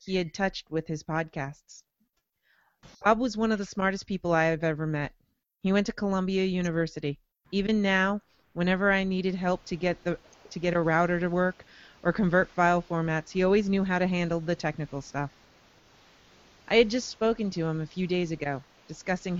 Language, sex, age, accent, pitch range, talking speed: English, female, 30-49, American, 165-200 Hz, 190 wpm